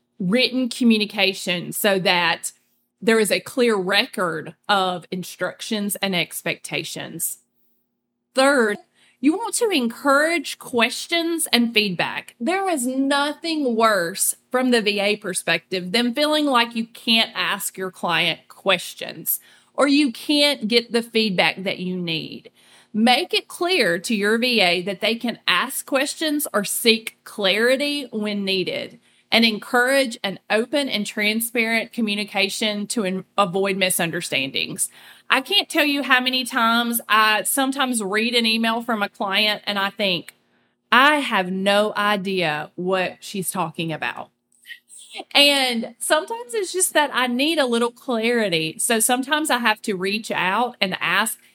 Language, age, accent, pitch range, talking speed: English, 30-49, American, 190-255 Hz, 135 wpm